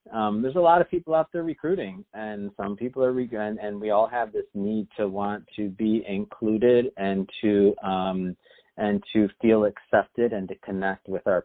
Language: English